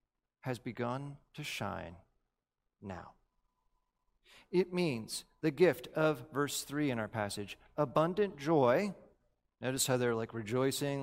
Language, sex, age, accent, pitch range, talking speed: English, male, 40-59, American, 125-185 Hz, 120 wpm